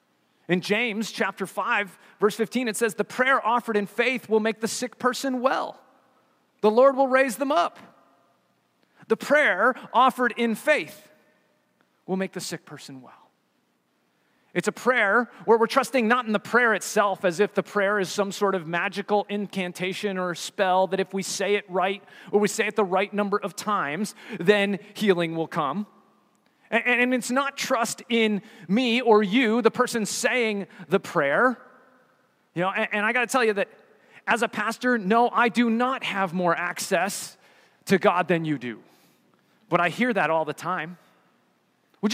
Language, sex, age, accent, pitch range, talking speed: English, male, 30-49, American, 190-245 Hz, 175 wpm